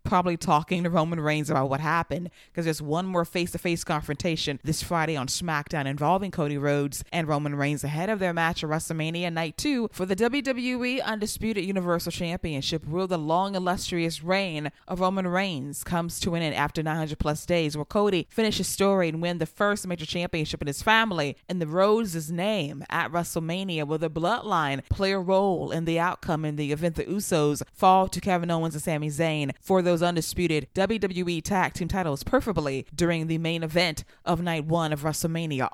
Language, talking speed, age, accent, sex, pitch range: English, 195 wpm, 20-39, American, female, 150-185 Hz